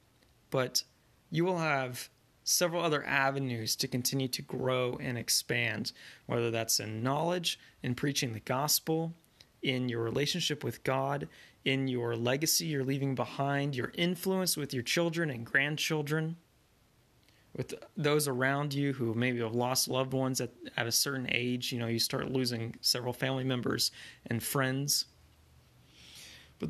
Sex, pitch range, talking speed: male, 120-150 Hz, 145 wpm